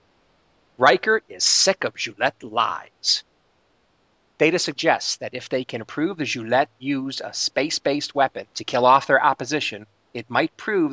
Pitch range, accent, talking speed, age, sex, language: 110-145 Hz, American, 150 wpm, 50-69, male, English